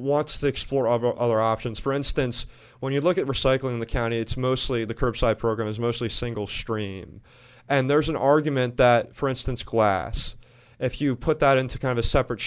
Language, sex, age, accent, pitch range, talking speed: English, male, 30-49, American, 115-135 Hz, 200 wpm